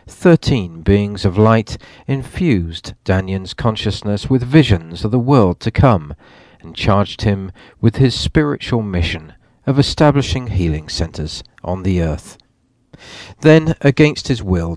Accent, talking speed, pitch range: British, 130 wpm, 90-130 Hz